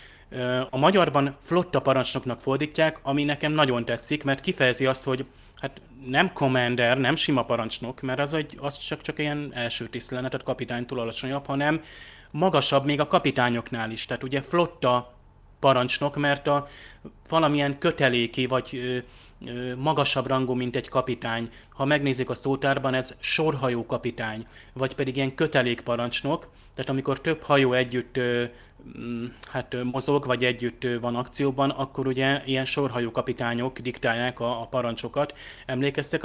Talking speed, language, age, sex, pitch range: 135 wpm, Hungarian, 30-49, male, 125-140 Hz